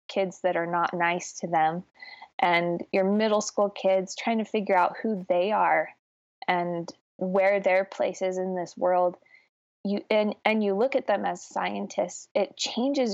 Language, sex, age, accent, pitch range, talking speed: English, female, 20-39, American, 180-220 Hz, 175 wpm